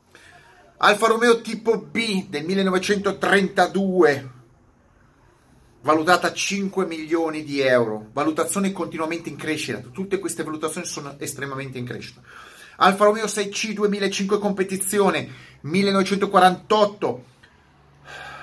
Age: 30-49